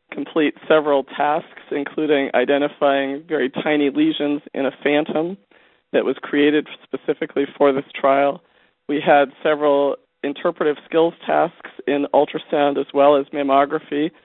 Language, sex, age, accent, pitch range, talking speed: English, male, 40-59, American, 140-160 Hz, 125 wpm